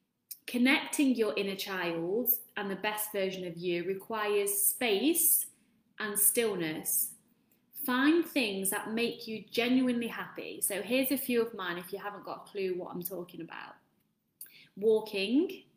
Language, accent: English, British